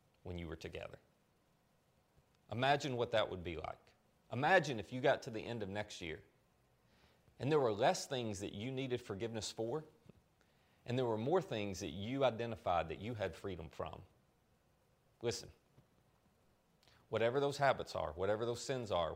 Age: 30-49